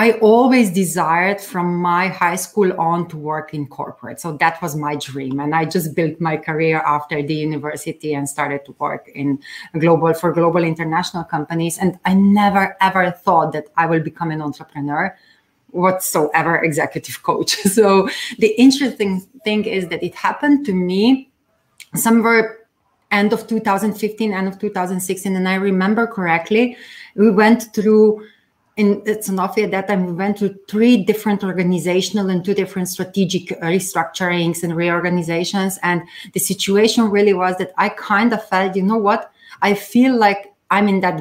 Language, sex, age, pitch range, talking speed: English, female, 30-49, 170-215 Hz, 160 wpm